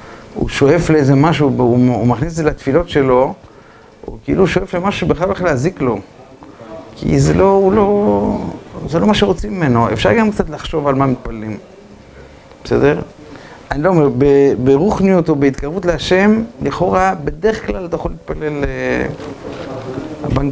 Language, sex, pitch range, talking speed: Hebrew, male, 125-170 Hz, 145 wpm